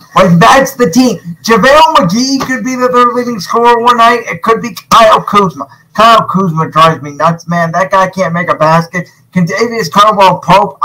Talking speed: 195 wpm